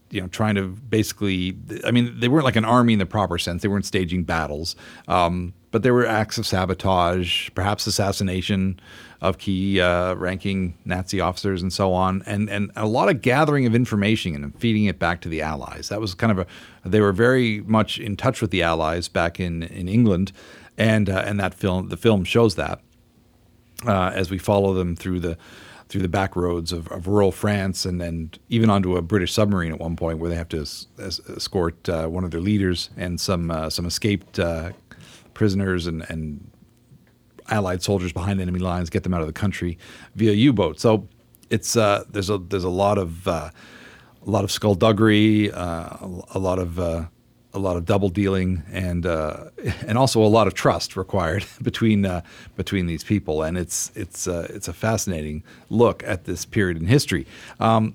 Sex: male